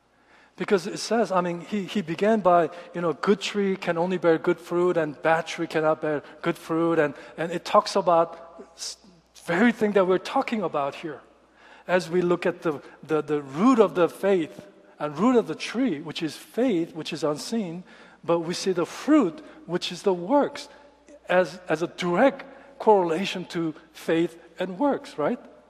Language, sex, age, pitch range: Korean, male, 50-69, 170-260 Hz